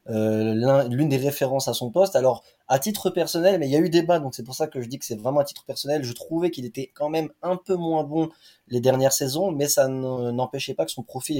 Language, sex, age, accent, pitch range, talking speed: French, male, 20-39, French, 115-145 Hz, 270 wpm